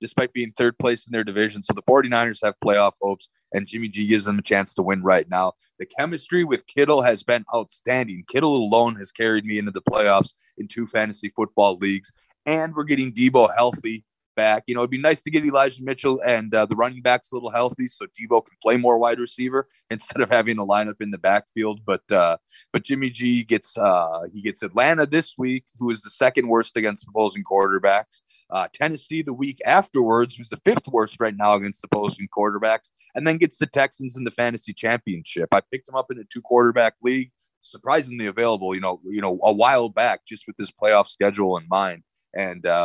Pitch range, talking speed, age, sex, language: 100-130 Hz, 215 wpm, 30-49, male, English